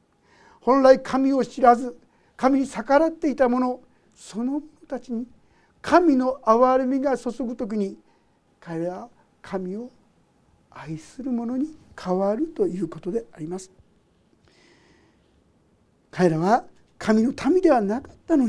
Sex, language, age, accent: male, Japanese, 60-79, native